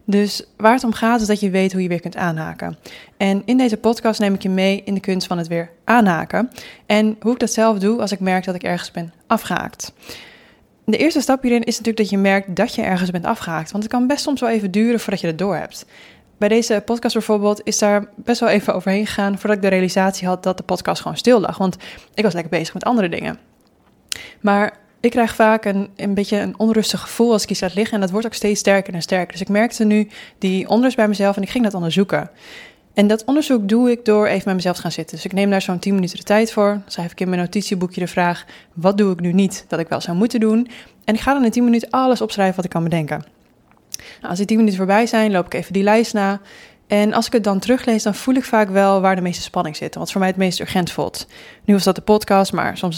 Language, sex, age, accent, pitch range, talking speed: Dutch, female, 20-39, Dutch, 185-220 Hz, 265 wpm